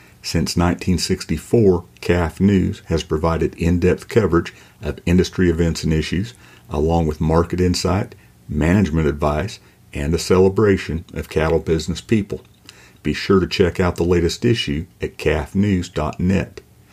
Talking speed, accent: 130 wpm, American